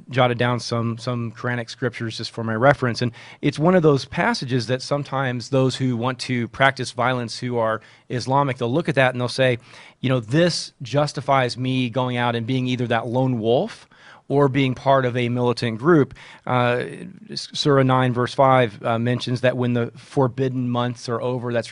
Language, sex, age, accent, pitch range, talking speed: English, male, 30-49, American, 120-135 Hz, 190 wpm